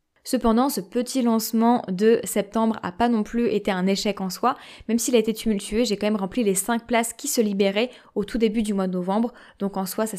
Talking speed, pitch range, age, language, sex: 240 wpm, 200-235 Hz, 20-39, French, female